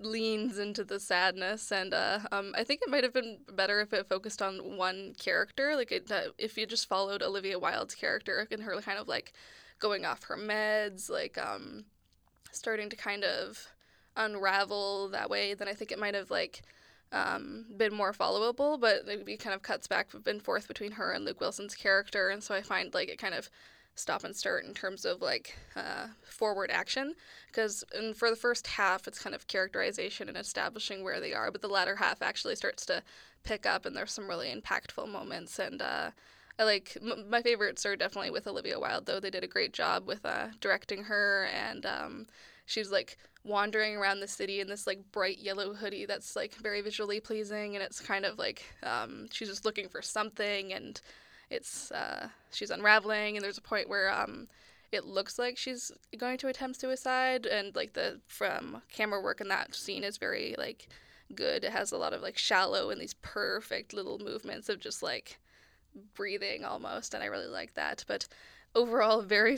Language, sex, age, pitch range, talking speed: English, female, 10-29, 200-235 Hz, 195 wpm